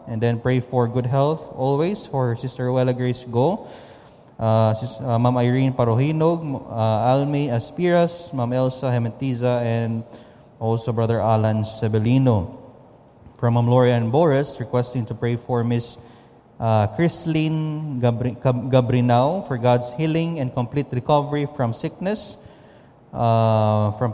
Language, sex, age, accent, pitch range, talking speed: English, male, 20-39, Filipino, 115-135 Hz, 130 wpm